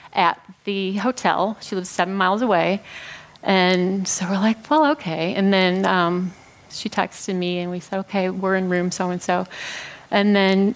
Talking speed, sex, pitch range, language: 165 wpm, female, 185-230 Hz, English